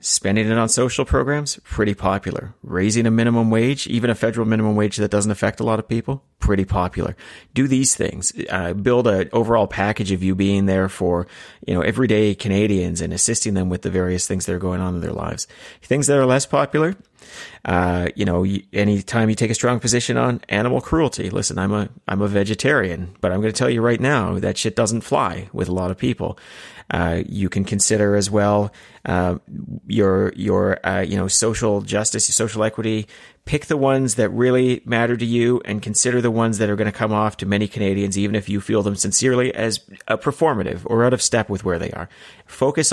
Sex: male